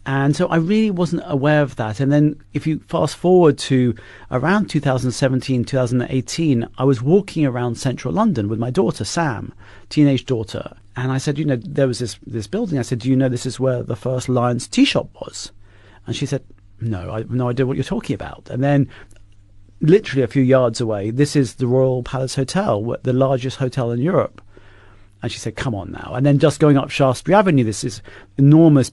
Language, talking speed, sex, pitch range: English, 205 wpm, male, 115-145 Hz